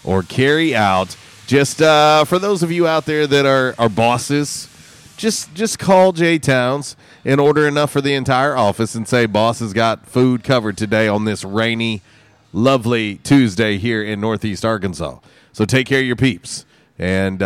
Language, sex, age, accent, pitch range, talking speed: English, male, 30-49, American, 105-140 Hz, 175 wpm